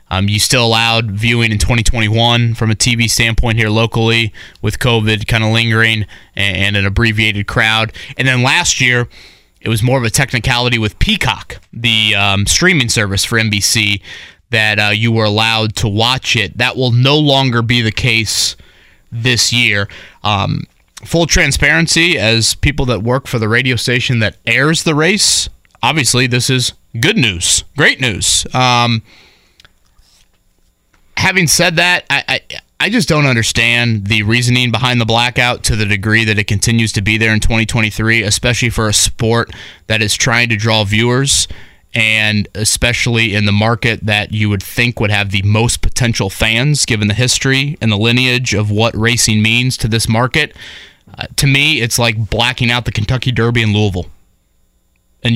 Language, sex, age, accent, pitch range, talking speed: English, male, 20-39, American, 110-125 Hz, 170 wpm